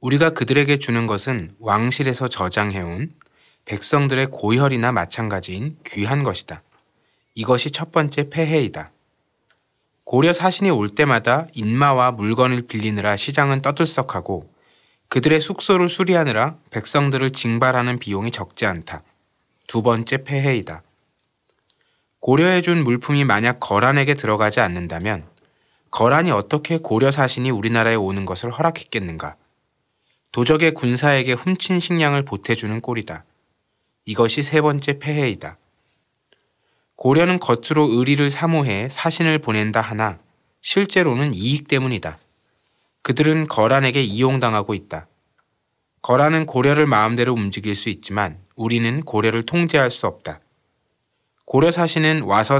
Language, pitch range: Korean, 110-150 Hz